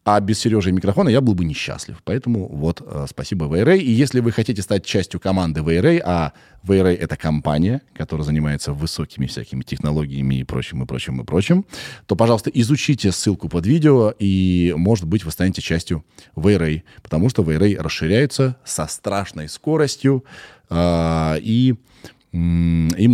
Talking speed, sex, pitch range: 155 wpm, male, 80-115 Hz